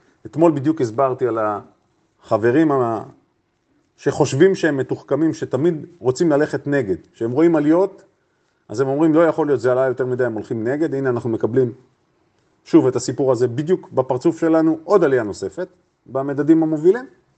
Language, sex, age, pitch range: Hebrew, male, 40-59, 125-170 Hz